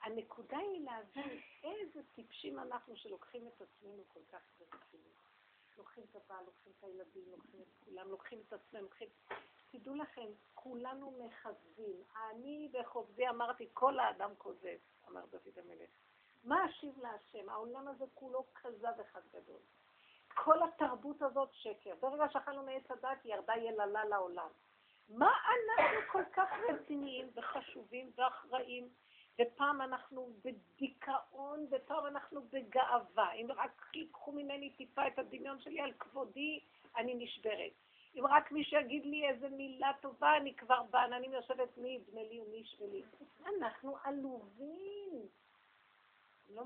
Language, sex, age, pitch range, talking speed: Hebrew, female, 50-69, 230-285 Hz, 130 wpm